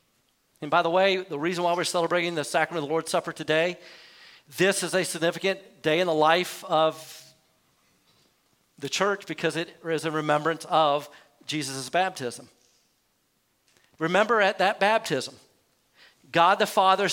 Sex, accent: male, American